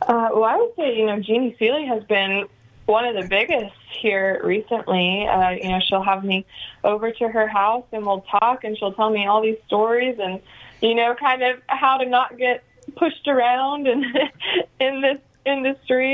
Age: 20-39